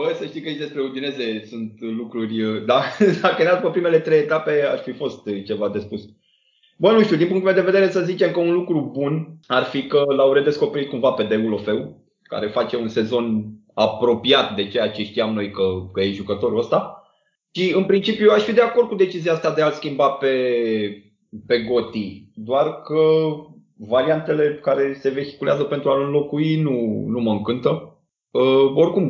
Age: 20-39